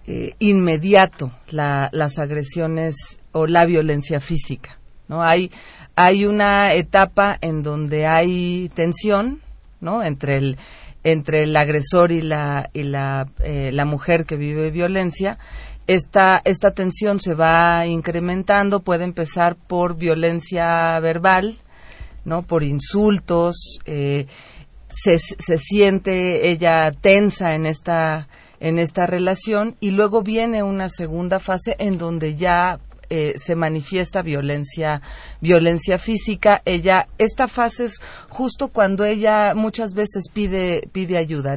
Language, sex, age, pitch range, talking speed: Spanish, female, 40-59, 160-195 Hz, 125 wpm